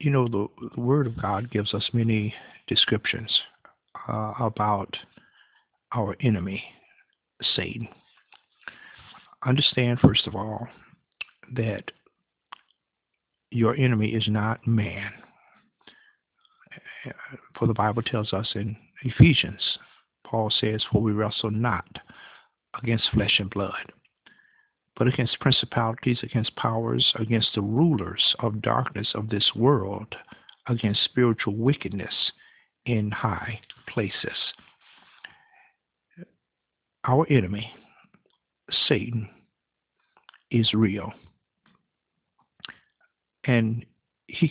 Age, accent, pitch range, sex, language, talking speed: 50-69, American, 105-120 Hz, male, English, 90 wpm